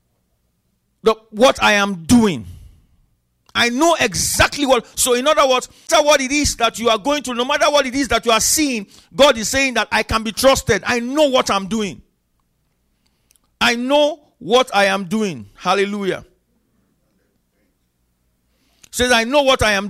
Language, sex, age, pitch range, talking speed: English, male, 50-69, 185-265 Hz, 180 wpm